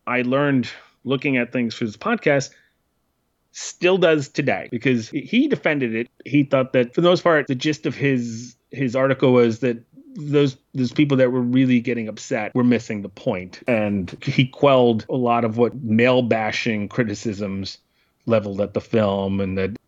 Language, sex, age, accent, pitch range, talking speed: English, male, 30-49, American, 115-150 Hz, 175 wpm